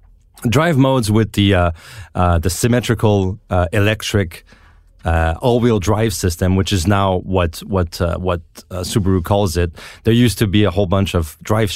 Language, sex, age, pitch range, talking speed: English, male, 30-49, 85-105 Hz, 175 wpm